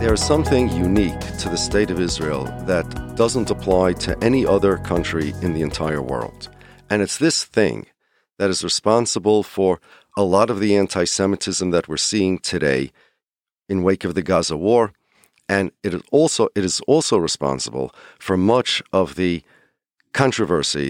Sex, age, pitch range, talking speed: male, 40-59, 90-110 Hz, 160 wpm